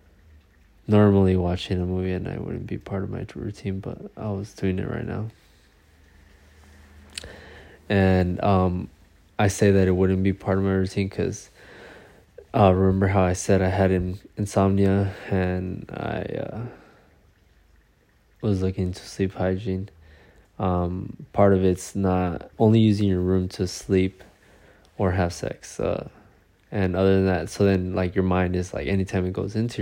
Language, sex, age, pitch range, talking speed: English, male, 20-39, 90-100 Hz, 160 wpm